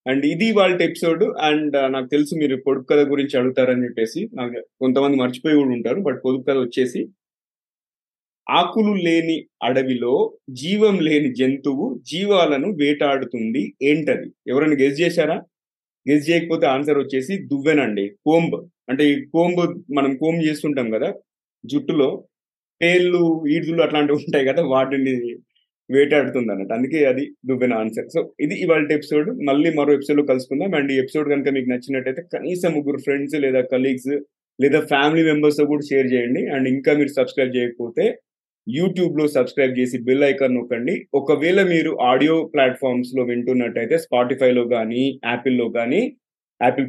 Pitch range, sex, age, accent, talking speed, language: 130-155 Hz, male, 30-49, native, 140 wpm, Telugu